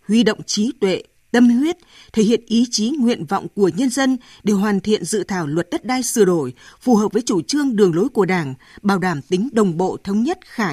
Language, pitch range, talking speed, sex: Vietnamese, 190-260 Hz, 235 wpm, female